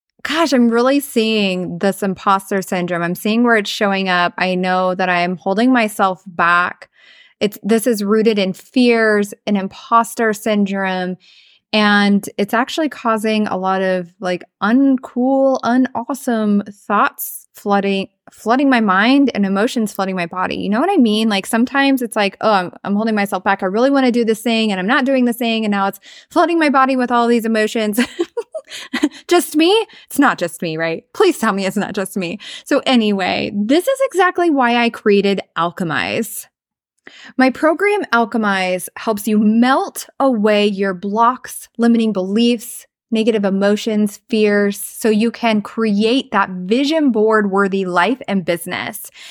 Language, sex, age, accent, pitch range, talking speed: English, female, 20-39, American, 200-255 Hz, 165 wpm